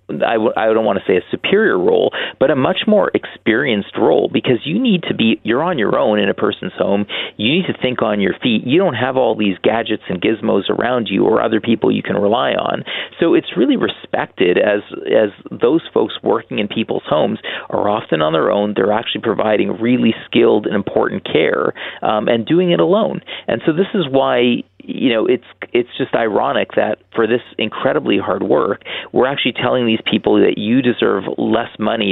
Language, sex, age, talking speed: English, male, 40-59, 205 wpm